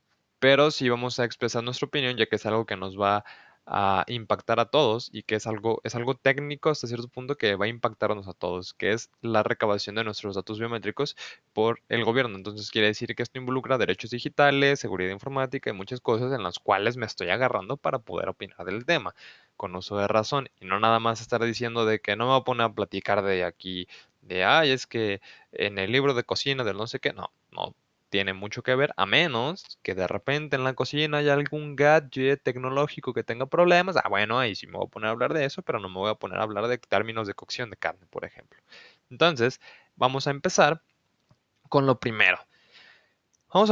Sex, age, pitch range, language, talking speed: male, 20-39, 105-140 Hz, Spanish, 220 wpm